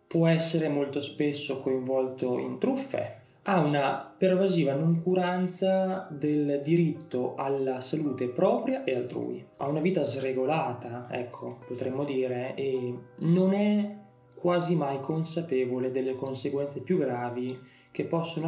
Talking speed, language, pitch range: 120 wpm, Italian, 125-160 Hz